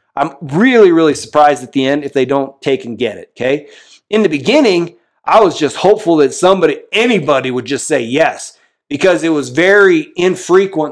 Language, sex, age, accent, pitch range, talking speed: English, male, 40-59, American, 140-180 Hz, 185 wpm